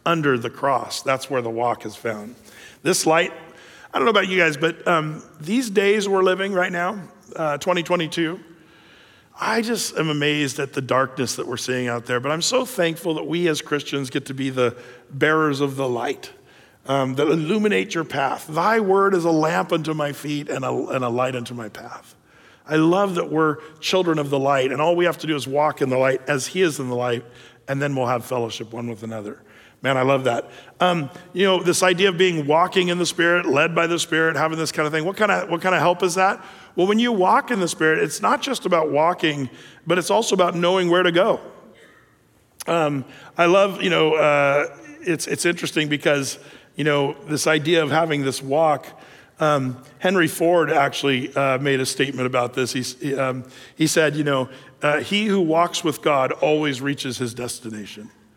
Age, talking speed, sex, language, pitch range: 50-69, 210 wpm, male, English, 135-175 Hz